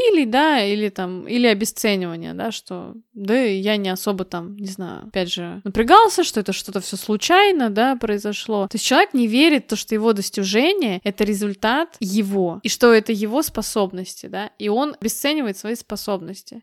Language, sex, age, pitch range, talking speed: Russian, female, 20-39, 200-245 Hz, 175 wpm